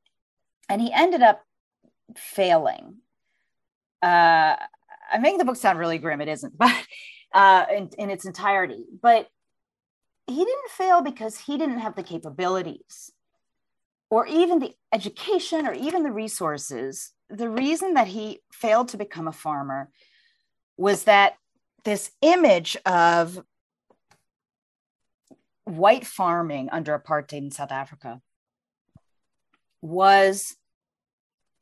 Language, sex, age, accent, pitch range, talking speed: English, female, 40-59, American, 175-275 Hz, 115 wpm